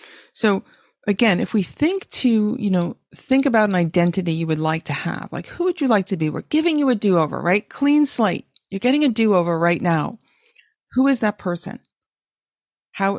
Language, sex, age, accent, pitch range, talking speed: English, female, 40-59, American, 180-255 Hz, 195 wpm